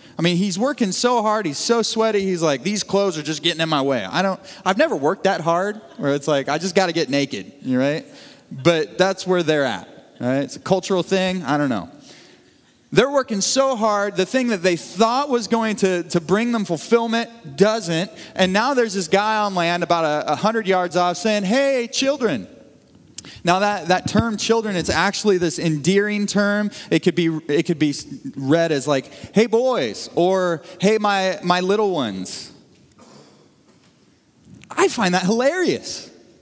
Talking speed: 185 wpm